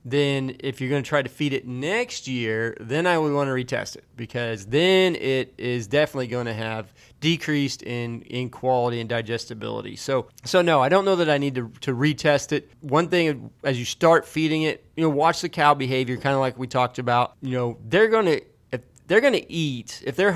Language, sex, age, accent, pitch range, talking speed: English, male, 30-49, American, 125-150 Hz, 225 wpm